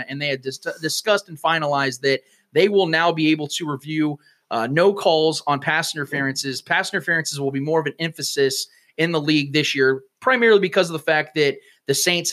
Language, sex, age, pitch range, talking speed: English, male, 30-49, 145-190 Hz, 200 wpm